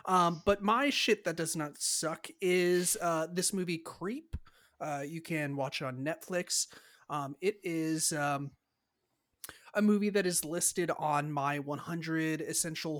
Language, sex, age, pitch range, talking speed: English, male, 30-49, 145-185 Hz, 150 wpm